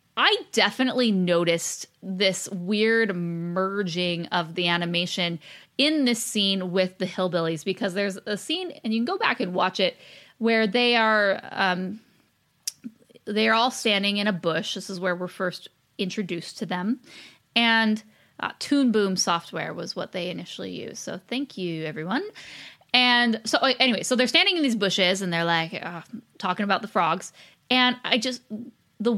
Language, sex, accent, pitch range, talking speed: English, female, American, 175-230 Hz, 165 wpm